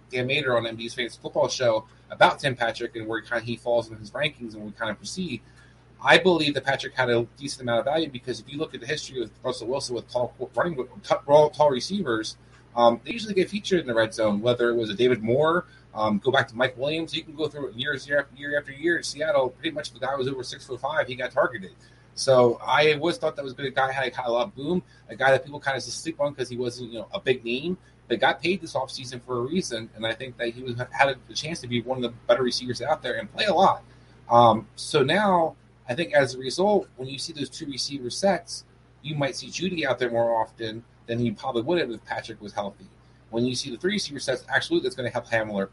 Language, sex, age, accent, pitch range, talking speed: English, male, 30-49, American, 120-150 Hz, 270 wpm